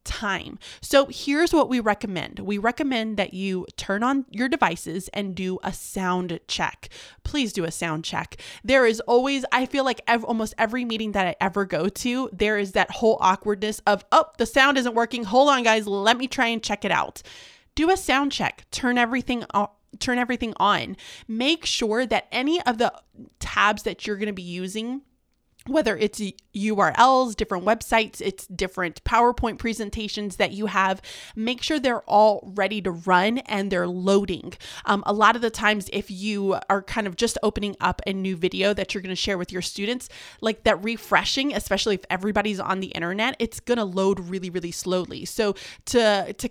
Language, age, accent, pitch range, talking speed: English, 20-39, American, 195-240 Hz, 190 wpm